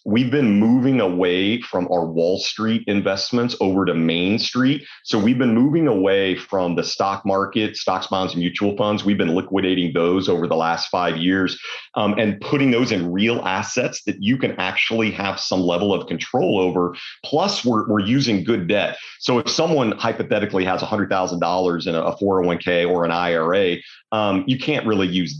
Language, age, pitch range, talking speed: English, 40-59, 90-110 Hz, 180 wpm